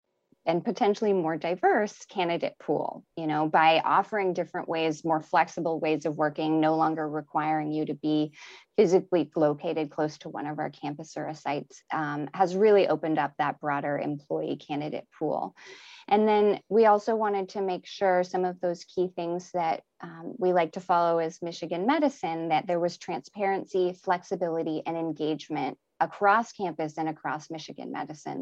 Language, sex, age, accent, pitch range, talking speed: English, female, 20-39, American, 155-185 Hz, 165 wpm